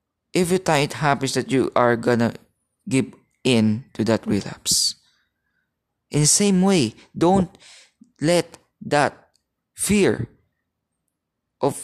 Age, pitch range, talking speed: 20-39, 115-145 Hz, 110 wpm